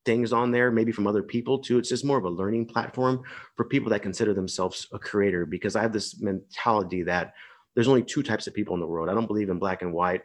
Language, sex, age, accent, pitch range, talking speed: English, male, 30-49, American, 95-115 Hz, 260 wpm